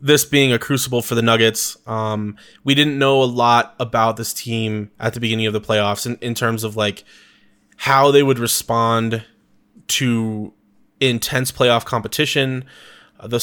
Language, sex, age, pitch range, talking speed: English, male, 20-39, 115-135 Hz, 165 wpm